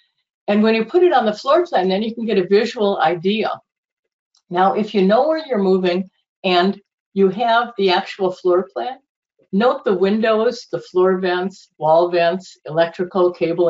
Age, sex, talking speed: 50-69, female, 175 wpm